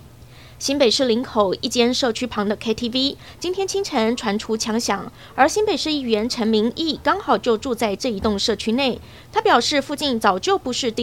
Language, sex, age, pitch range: Chinese, female, 20-39, 220-270 Hz